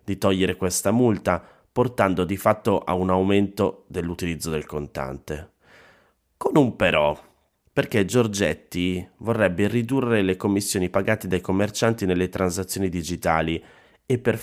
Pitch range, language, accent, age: 85-105 Hz, Italian, native, 30-49